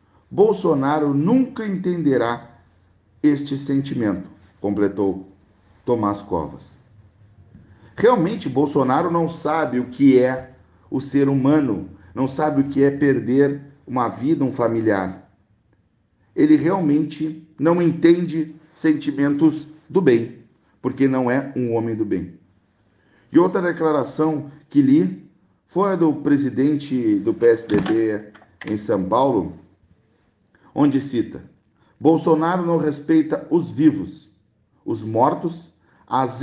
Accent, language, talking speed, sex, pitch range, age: Brazilian, Portuguese, 105 wpm, male, 110-155 Hz, 50-69